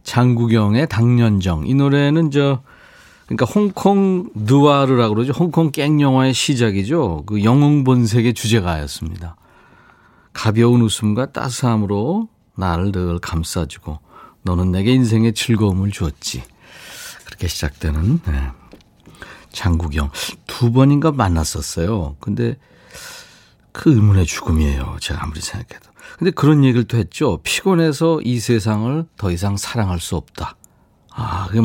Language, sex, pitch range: Korean, male, 90-145 Hz